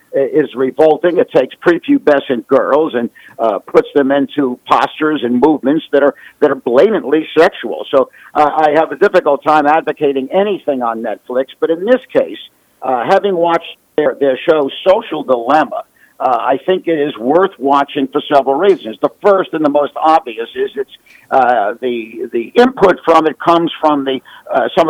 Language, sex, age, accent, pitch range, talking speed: English, male, 50-69, American, 140-185 Hz, 175 wpm